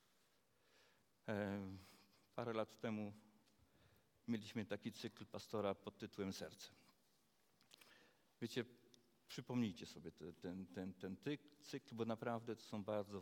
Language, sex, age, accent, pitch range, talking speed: Polish, male, 50-69, native, 105-155 Hz, 105 wpm